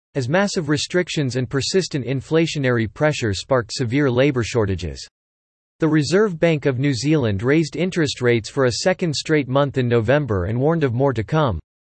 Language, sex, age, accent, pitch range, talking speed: English, male, 40-59, American, 120-165 Hz, 165 wpm